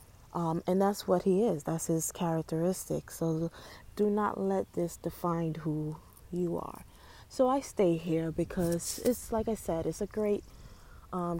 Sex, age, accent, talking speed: female, 20-39, American, 165 wpm